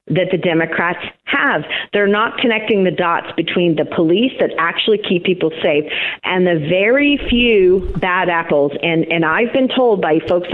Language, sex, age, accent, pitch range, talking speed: English, female, 40-59, American, 160-195 Hz, 170 wpm